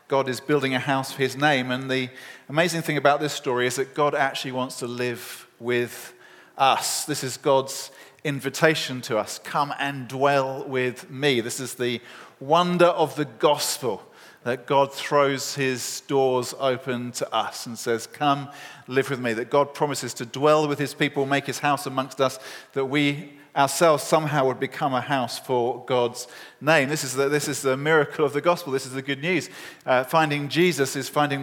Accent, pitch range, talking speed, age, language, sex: British, 135-160 Hz, 185 wpm, 40-59, English, male